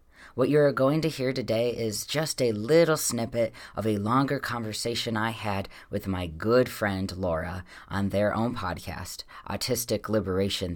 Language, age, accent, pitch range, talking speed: English, 20-39, American, 90-120 Hz, 160 wpm